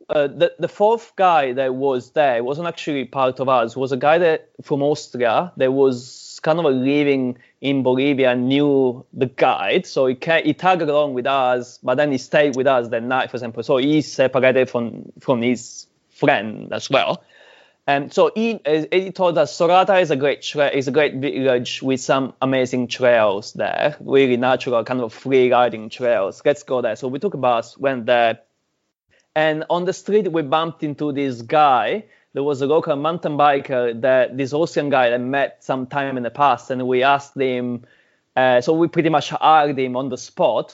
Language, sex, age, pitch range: English, male, 20-39, 125-150 Hz